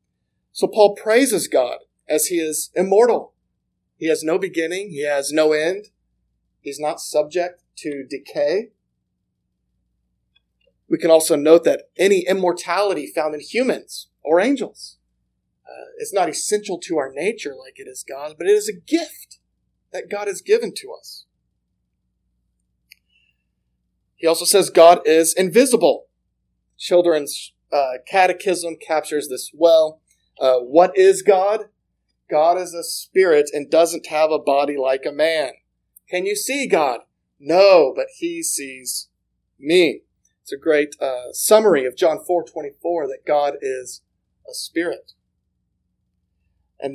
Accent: American